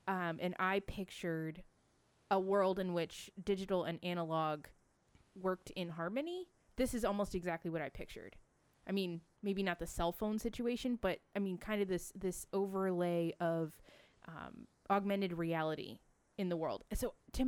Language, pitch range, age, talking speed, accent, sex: English, 170-210 Hz, 20-39, 160 wpm, American, female